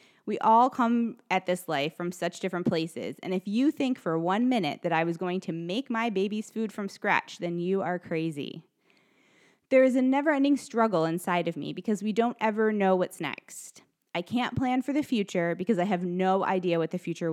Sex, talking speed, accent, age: female, 215 wpm, American, 20-39